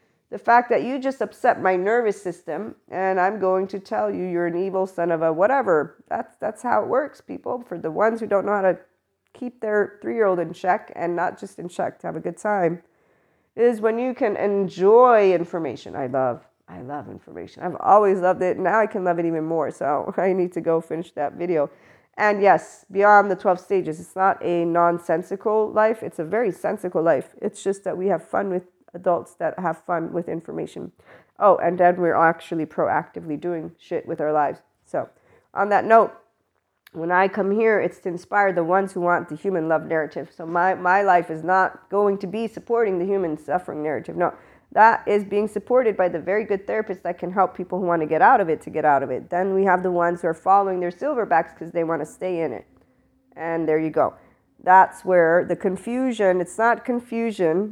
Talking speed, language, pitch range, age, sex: 215 wpm, English, 170-200 Hz, 40-59, female